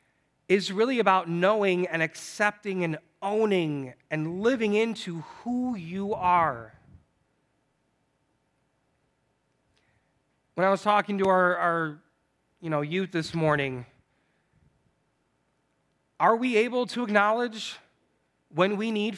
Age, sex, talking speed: 30-49, male, 100 wpm